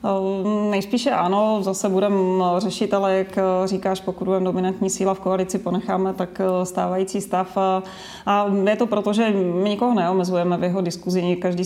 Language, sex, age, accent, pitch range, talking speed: Czech, female, 30-49, native, 180-190 Hz, 160 wpm